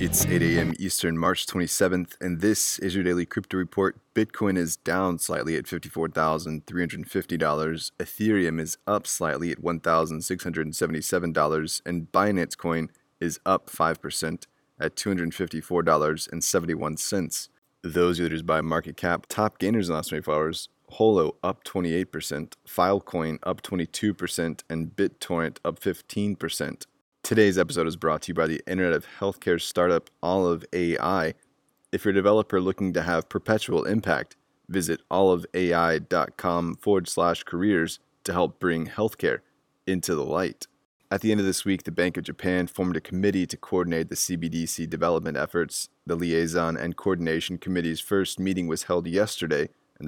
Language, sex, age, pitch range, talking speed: English, male, 30-49, 80-95 Hz, 145 wpm